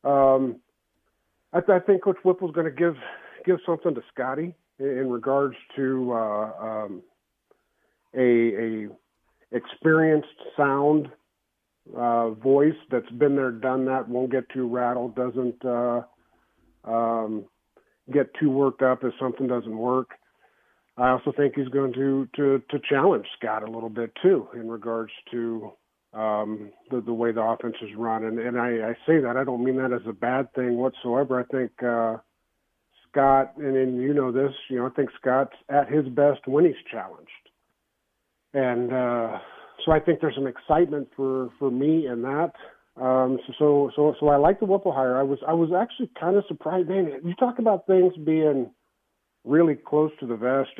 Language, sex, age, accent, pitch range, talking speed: English, male, 50-69, American, 120-150 Hz, 175 wpm